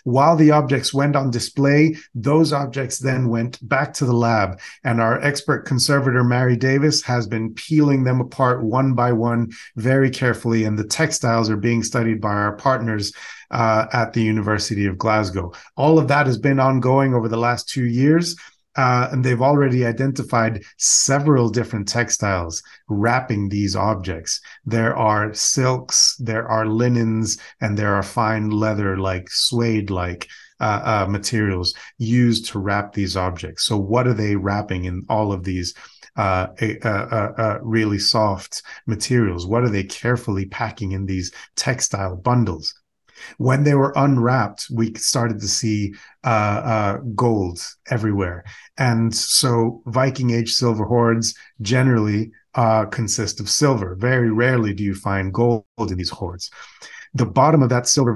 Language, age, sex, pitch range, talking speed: English, 30-49, male, 105-130 Hz, 155 wpm